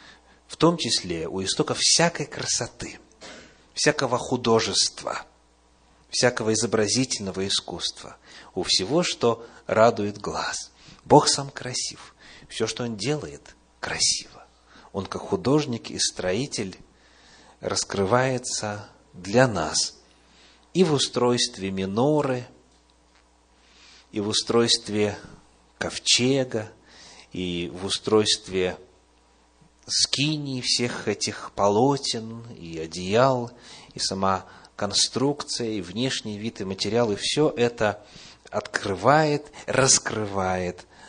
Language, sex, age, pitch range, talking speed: Russian, male, 30-49, 85-125 Hz, 90 wpm